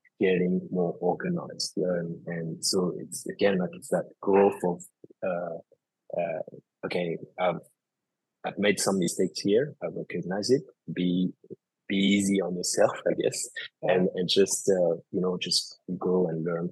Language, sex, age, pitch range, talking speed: English, male, 30-49, 90-105 Hz, 150 wpm